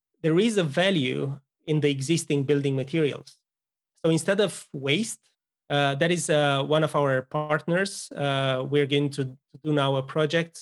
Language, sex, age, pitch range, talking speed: English, male, 30-49, 135-170 Hz, 165 wpm